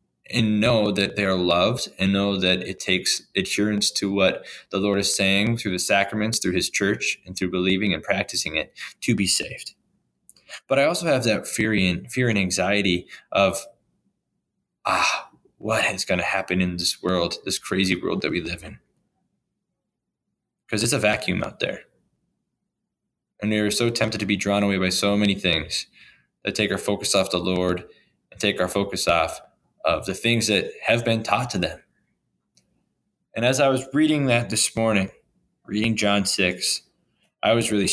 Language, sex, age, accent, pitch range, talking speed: English, male, 20-39, American, 95-110 Hz, 175 wpm